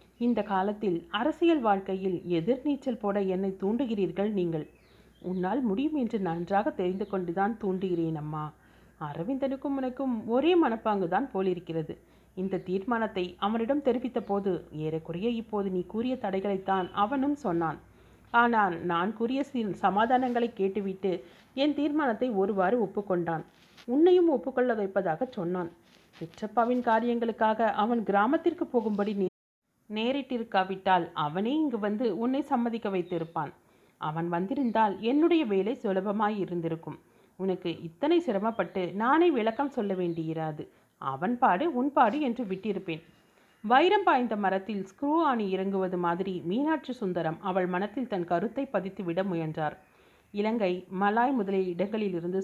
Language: Tamil